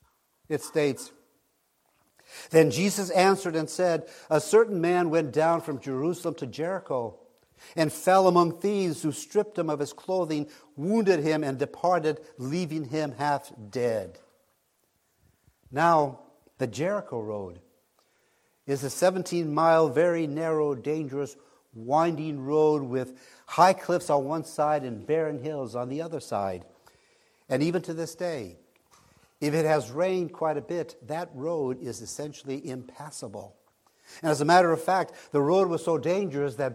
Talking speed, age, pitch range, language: 145 wpm, 60-79, 135-170 Hz, English